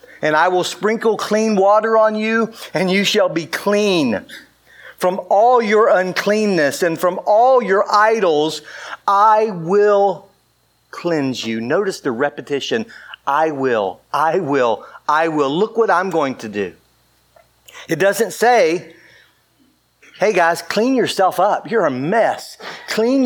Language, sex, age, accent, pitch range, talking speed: English, male, 50-69, American, 140-200 Hz, 135 wpm